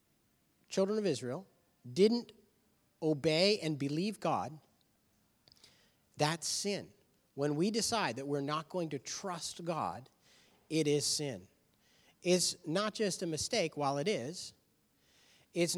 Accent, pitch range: American, 130-180 Hz